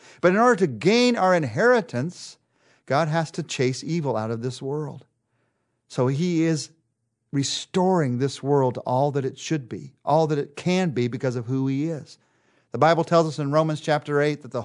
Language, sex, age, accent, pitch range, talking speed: English, male, 50-69, American, 125-165 Hz, 195 wpm